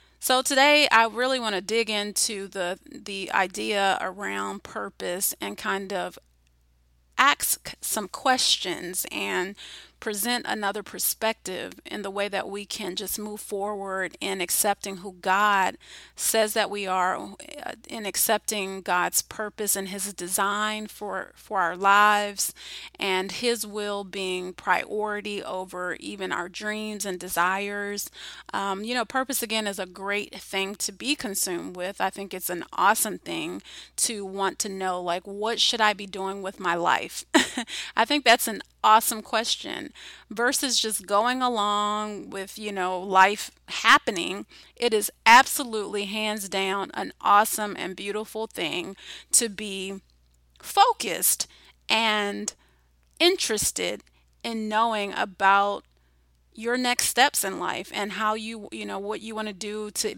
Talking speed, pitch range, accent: 145 wpm, 190-220 Hz, American